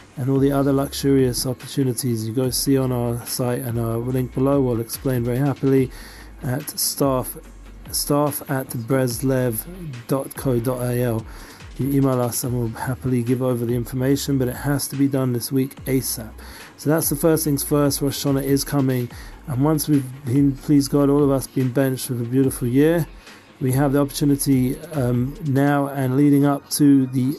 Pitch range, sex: 125-145 Hz, male